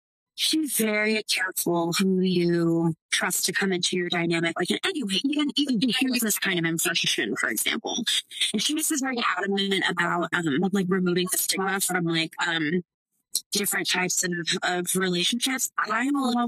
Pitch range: 175-220 Hz